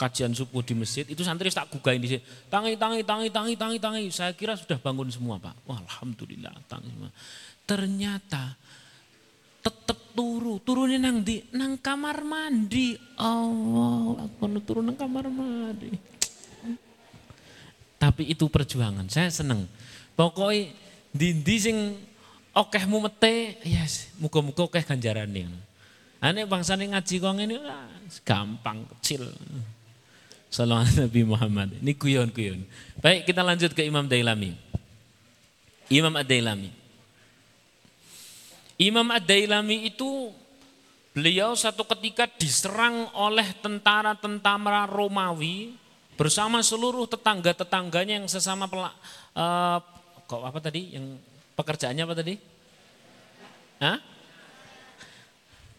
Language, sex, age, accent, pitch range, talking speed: Indonesian, male, 30-49, native, 130-220 Hz, 115 wpm